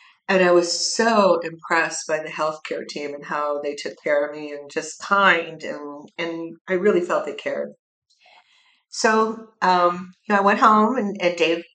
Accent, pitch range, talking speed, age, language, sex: American, 155-205 Hz, 185 wpm, 50-69, English, female